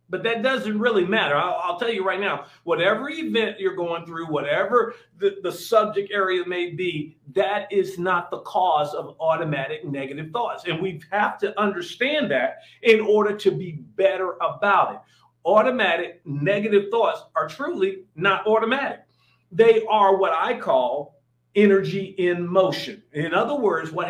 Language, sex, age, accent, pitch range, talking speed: English, male, 40-59, American, 175-240 Hz, 160 wpm